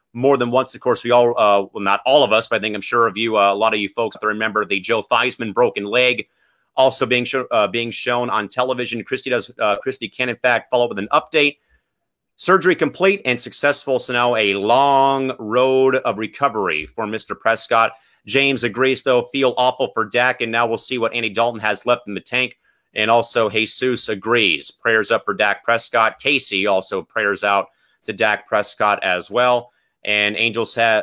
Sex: male